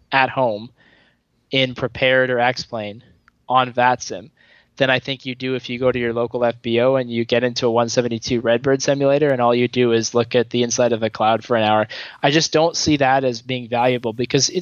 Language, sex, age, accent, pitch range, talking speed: English, male, 20-39, American, 120-135 Hz, 220 wpm